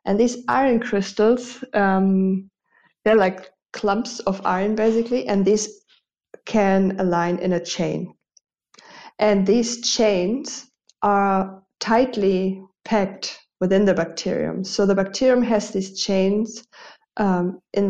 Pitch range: 175-205 Hz